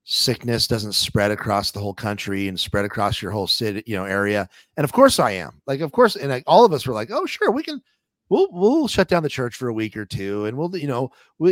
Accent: American